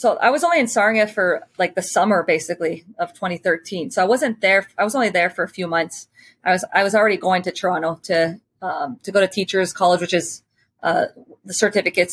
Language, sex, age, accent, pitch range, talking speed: English, female, 20-39, American, 180-205 Hz, 225 wpm